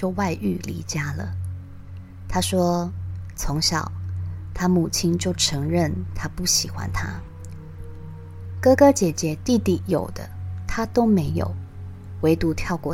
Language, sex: Chinese, female